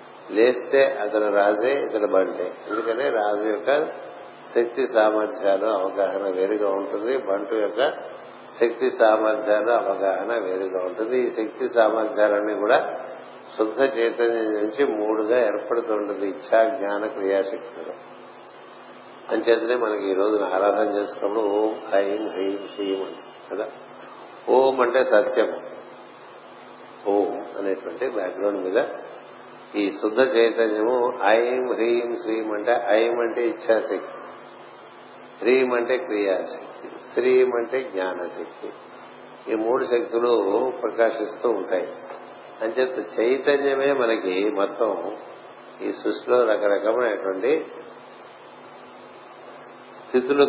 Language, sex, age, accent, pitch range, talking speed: Telugu, male, 50-69, native, 105-125 Hz, 95 wpm